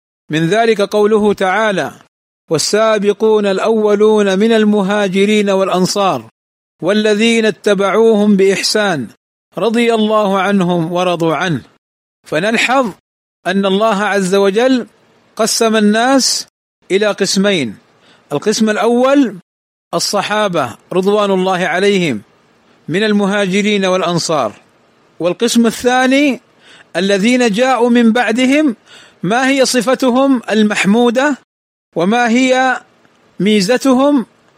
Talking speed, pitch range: 85 wpm, 190-235 Hz